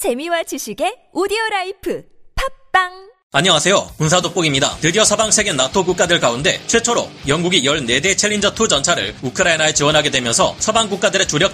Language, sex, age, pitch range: Korean, male, 30-49, 155-205 Hz